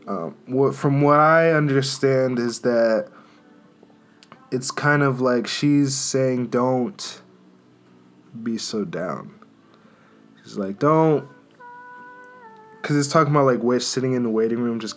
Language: English